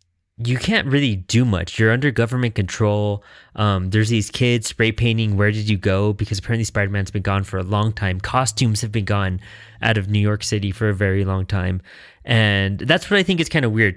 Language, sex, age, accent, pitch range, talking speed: English, male, 20-39, American, 95-115 Hz, 220 wpm